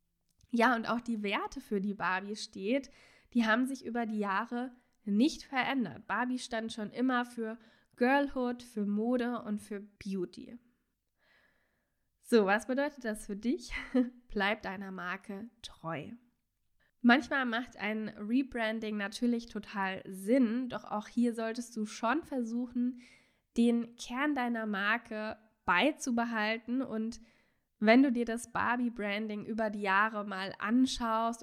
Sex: female